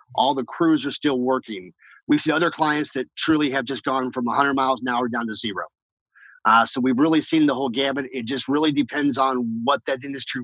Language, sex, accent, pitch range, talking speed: English, male, American, 130-160 Hz, 230 wpm